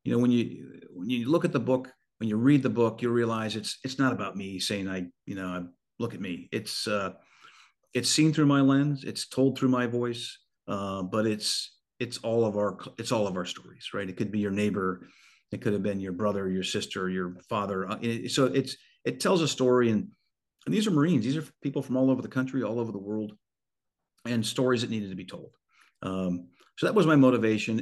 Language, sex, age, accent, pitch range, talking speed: English, male, 50-69, American, 100-125 Hz, 225 wpm